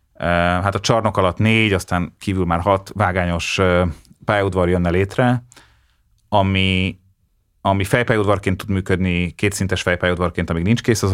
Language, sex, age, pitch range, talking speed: Hungarian, male, 30-49, 90-100 Hz, 130 wpm